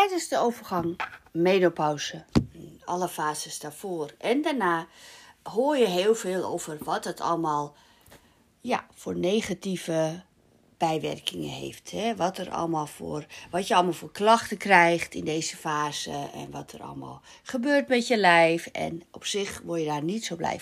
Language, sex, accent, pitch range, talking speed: Dutch, female, Dutch, 165-230 Hz, 135 wpm